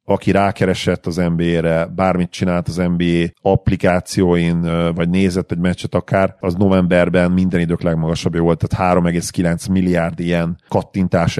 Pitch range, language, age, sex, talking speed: 85-95 Hz, Hungarian, 40-59, male, 130 wpm